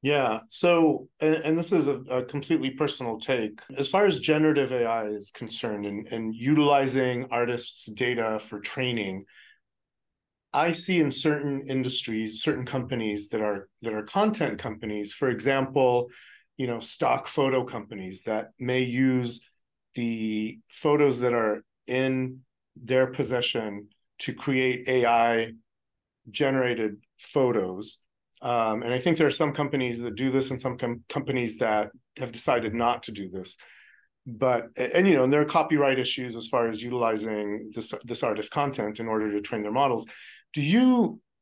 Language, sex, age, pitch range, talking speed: English, male, 40-59, 115-140 Hz, 155 wpm